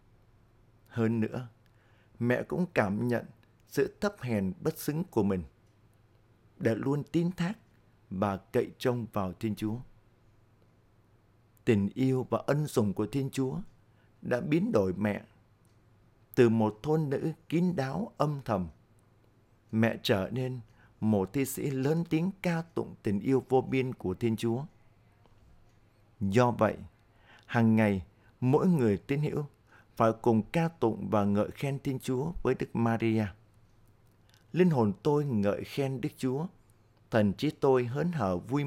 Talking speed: 145 wpm